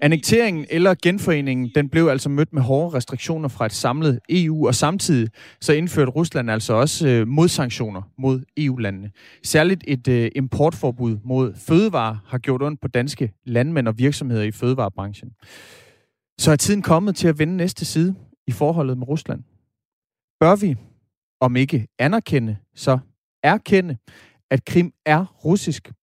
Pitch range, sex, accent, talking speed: 120-155 Hz, male, native, 150 wpm